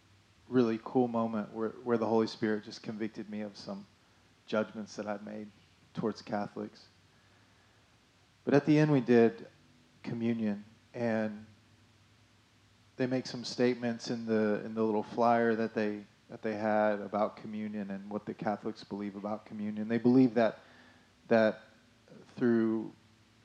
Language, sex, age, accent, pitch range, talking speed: English, male, 30-49, American, 105-120 Hz, 145 wpm